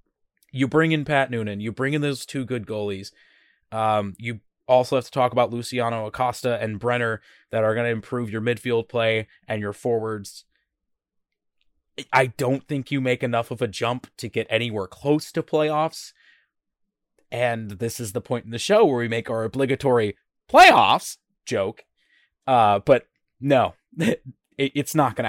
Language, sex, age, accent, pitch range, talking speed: English, male, 20-39, American, 115-145 Hz, 165 wpm